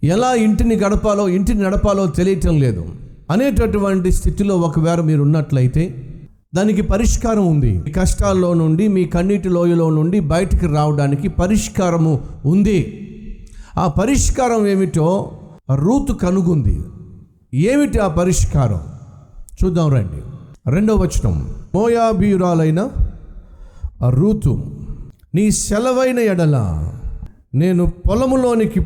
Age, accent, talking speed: 50-69, native, 95 wpm